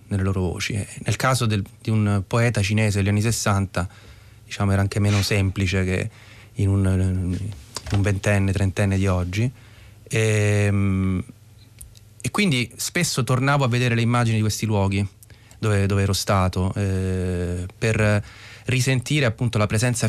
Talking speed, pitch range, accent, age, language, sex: 140 wpm, 100-115 Hz, native, 30-49, Italian, male